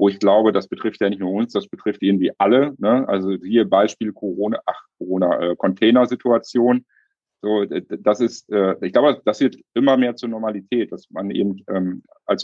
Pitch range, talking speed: 100-115 Hz, 190 wpm